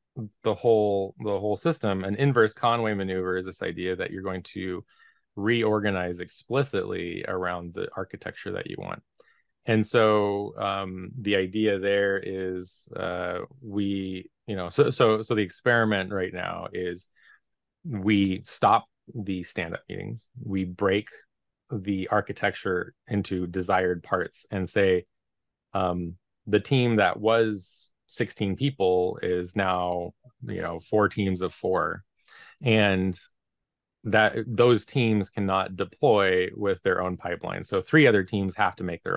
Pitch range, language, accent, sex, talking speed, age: 95-110 Hz, English, American, male, 140 wpm, 20-39